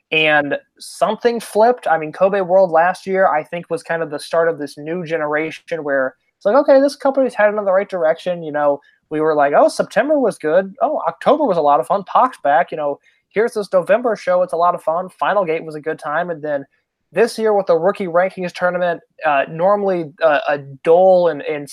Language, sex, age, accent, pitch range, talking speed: English, male, 20-39, American, 155-190 Hz, 225 wpm